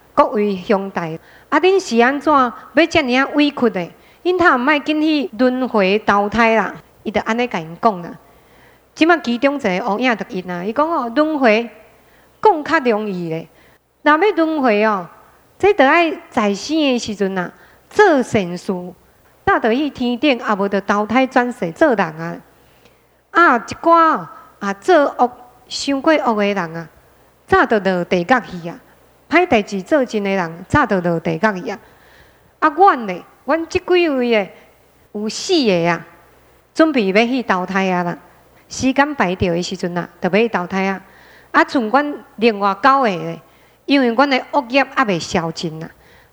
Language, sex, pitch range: Chinese, female, 195-290 Hz